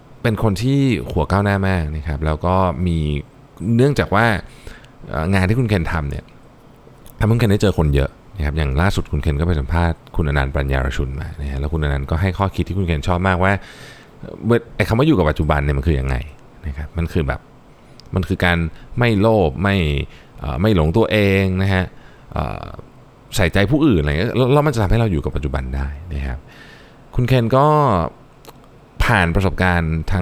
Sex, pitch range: male, 75-110 Hz